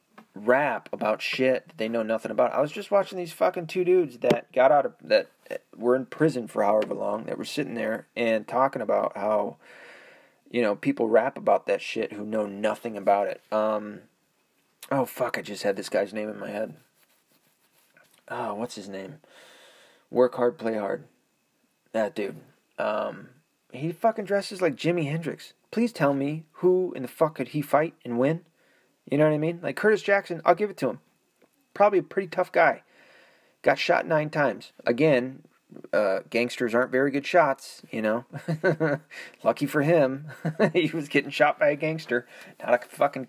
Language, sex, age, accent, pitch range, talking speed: English, male, 30-49, American, 115-165 Hz, 185 wpm